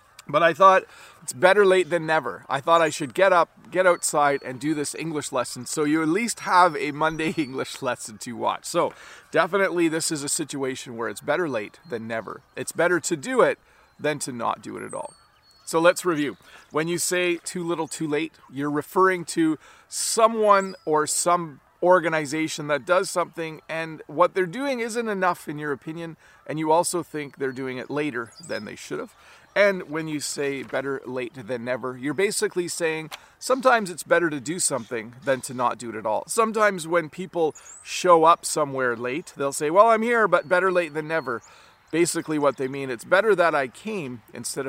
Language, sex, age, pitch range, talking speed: English, male, 40-59, 140-180 Hz, 195 wpm